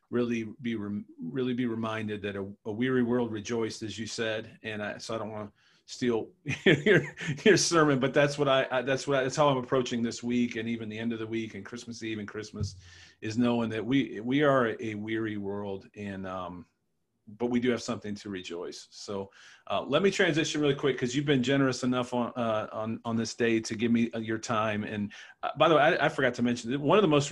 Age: 40-59